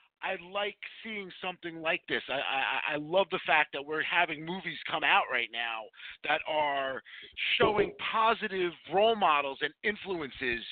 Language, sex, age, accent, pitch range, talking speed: English, male, 40-59, American, 145-200 Hz, 155 wpm